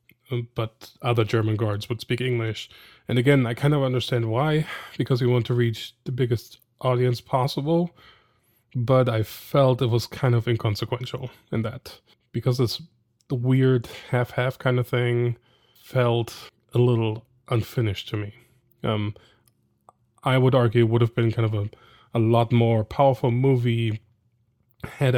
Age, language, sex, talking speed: 20-39, English, male, 150 wpm